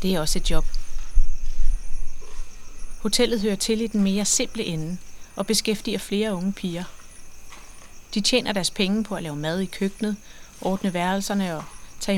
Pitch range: 180-215 Hz